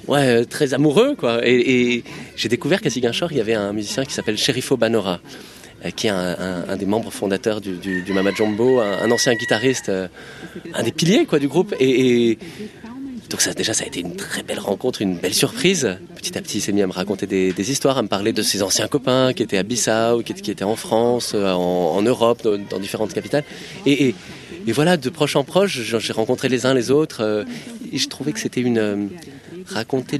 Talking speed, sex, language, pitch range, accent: 220 wpm, male, French, 110-145 Hz, French